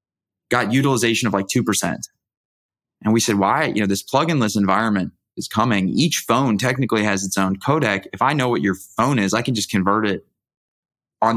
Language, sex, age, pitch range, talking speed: English, male, 20-39, 100-120 Hz, 190 wpm